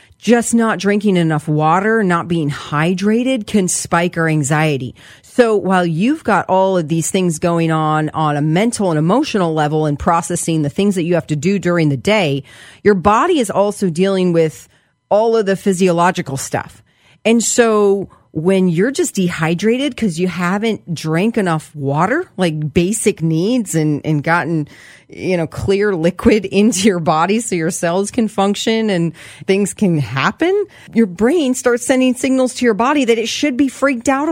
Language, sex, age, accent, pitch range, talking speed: English, female, 40-59, American, 170-235 Hz, 175 wpm